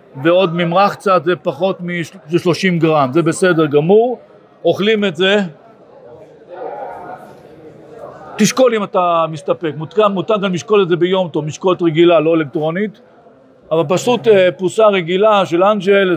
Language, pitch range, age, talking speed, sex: Hebrew, 165-200 Hz, 50-69, 125 wpm, male